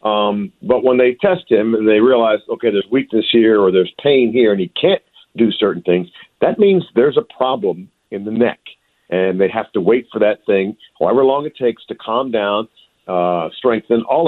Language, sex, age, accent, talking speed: English, male, 50-69, American, 205 wpm